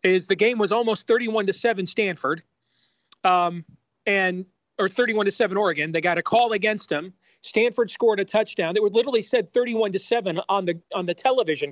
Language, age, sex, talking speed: English, 40-59, male, 195 wpm